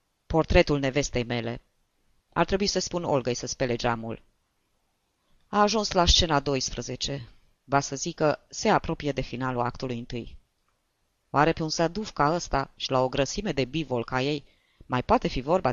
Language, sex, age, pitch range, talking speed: Romanian, female, 20-39, 120-170 Hz, 165 wpm